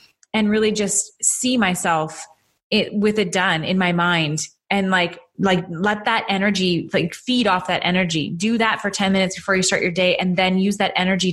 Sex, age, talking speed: female, 20-39, 195 wpm